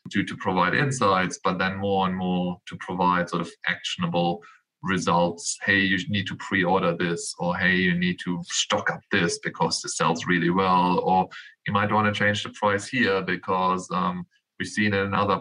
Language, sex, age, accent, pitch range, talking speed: English, male, 20-39, German, 90-105 Hz, 195 wpm